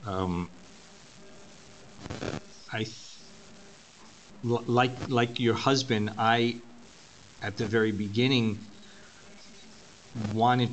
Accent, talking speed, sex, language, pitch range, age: American, 75 wpm, male, English, 100-120 Hz, 40-59